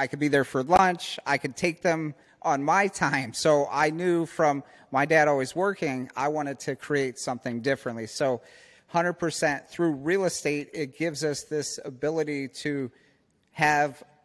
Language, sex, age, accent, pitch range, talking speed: English, male, 30-49, American, 130-155 Hz, 170 wpm